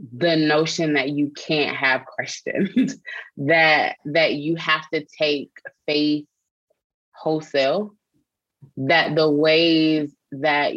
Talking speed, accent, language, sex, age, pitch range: 105 wpm, American, English, female, 20-39, 145-165 Hz